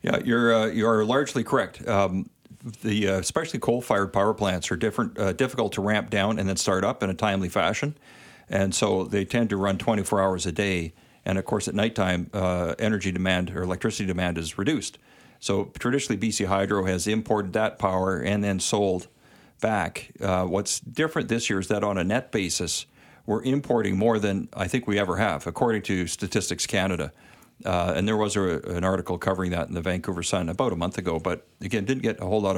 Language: English